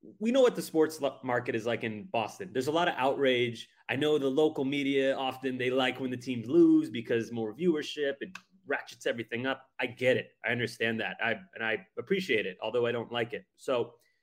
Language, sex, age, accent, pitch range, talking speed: English, male, 30-49, American, 125-170 Hz, 215 wpm